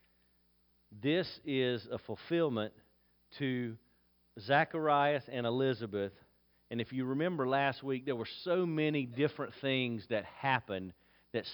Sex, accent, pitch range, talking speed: male, American, 110-140 Hz, 120 wpm